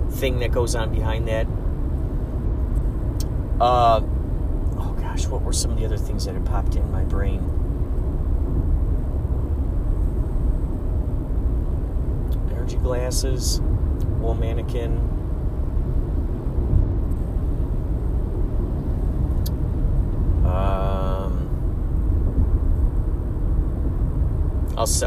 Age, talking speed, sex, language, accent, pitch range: 30-49, 65 wpm, male, English, American, 75-90 Hz